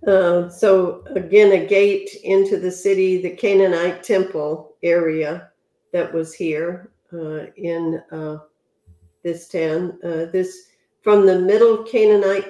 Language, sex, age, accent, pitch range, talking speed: English, female, 50-69, American, 160-195 Hz, 125 wpm